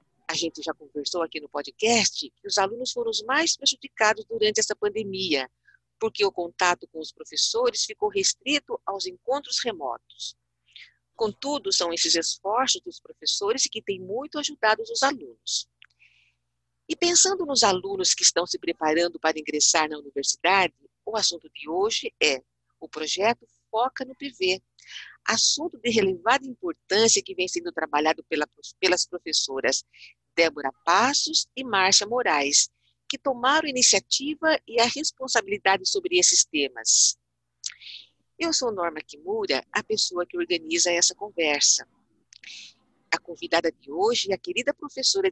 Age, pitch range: 50-69, 160-260 Hz